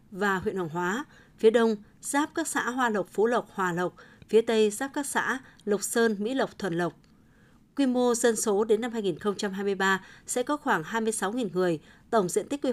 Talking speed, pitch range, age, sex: 200 wpm, 185-230 Hz, 20-39, female